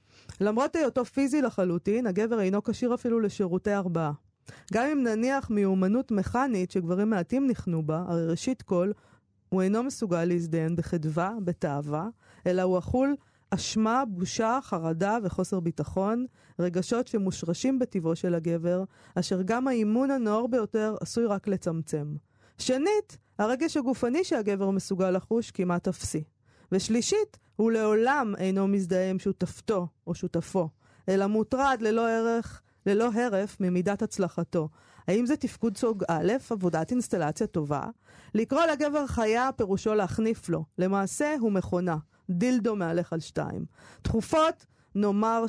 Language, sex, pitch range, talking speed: Hebrew, female, 175-230 Hz, 125 wpm